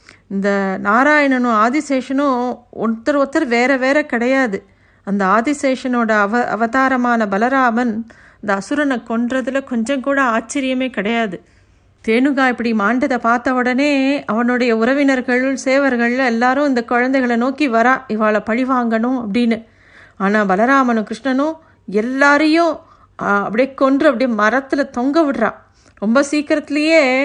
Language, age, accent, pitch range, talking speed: Tamil, 50-69, native, 225-270 Hz, 100 wpm